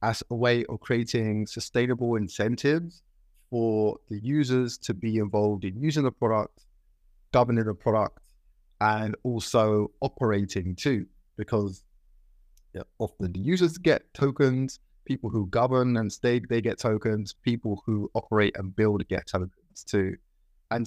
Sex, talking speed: male, 135 wpm